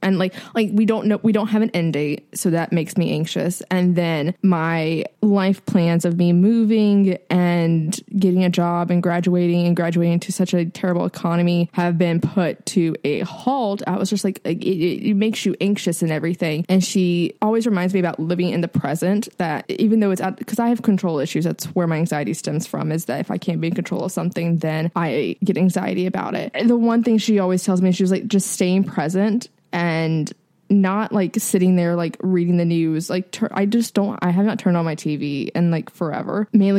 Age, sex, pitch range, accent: 20-39, female, 170-205 Hz, American